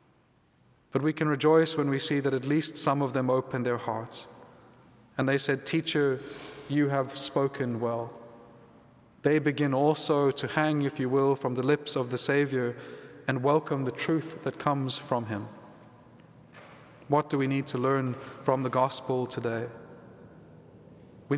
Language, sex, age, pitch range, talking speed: English, male, 30-49, 130-150 Hz, 160 wpm